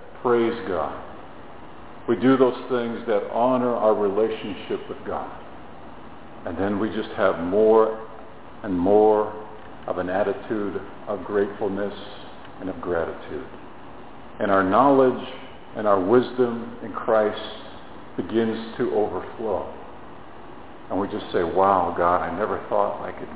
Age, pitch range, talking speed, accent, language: 50-69, 105-120 Hz, 130 wpm, American, English